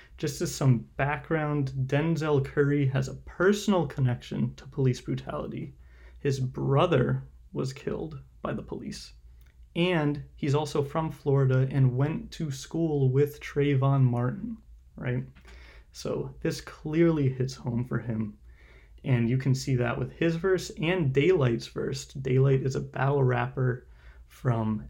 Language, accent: English, American